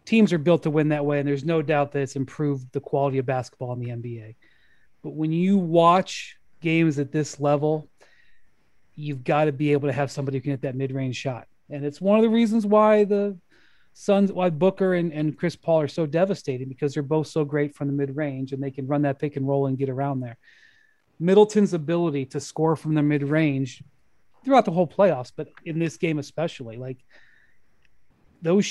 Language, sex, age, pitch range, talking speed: English, male, 30-49, 145-180 Hz, 215 wpm